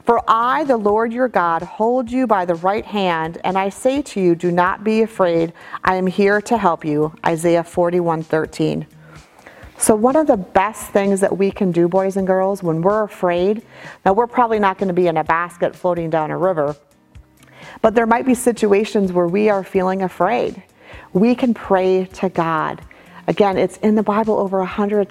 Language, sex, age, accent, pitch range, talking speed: English, female, 40-59, American, 175-215 Hz, 200 wpm